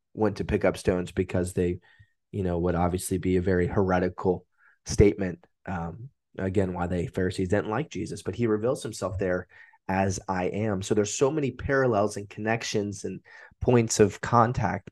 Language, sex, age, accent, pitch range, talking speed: English, male, 20-39, American, 95-115 Hz, 175 wpm